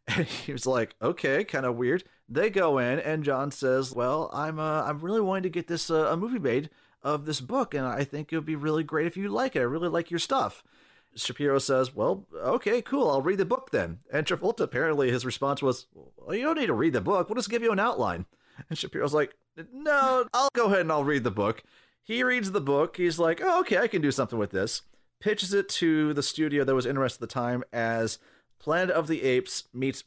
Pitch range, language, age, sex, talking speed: 115-170 Hz, English, 40-59, male, 240 wpm